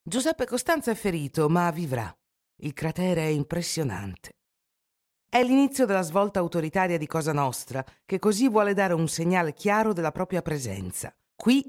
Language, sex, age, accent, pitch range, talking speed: Italian, female, 50-69, native, 150-200 Hz, 150 wpm